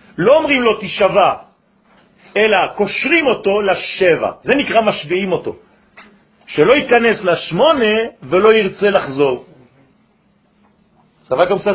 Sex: male